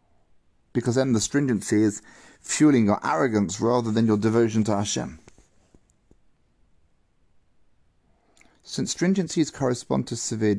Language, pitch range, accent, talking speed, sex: English, 110-145 Hz, British, 110 wpm, male